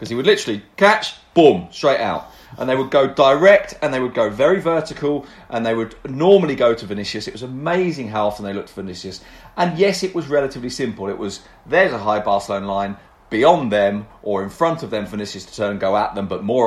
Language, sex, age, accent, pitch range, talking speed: English, male, 40-59, British, 100-140 Hz, 235 wpm